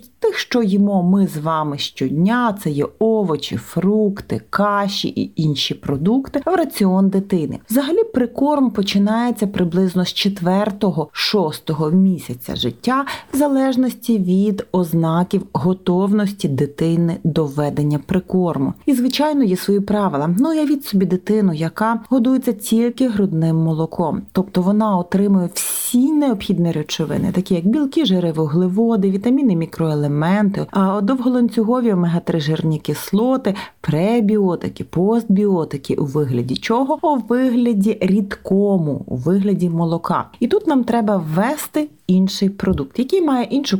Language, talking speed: Ukrainian, 120 wpm